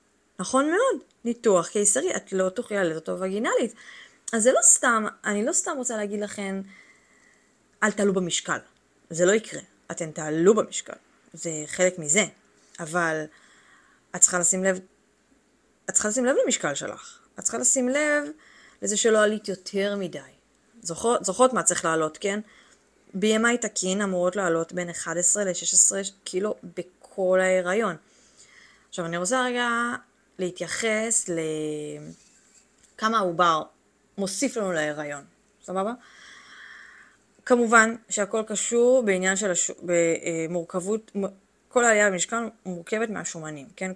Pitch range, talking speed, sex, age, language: 175-220 Hz, 125 wpm, female, 20-39, Hebrew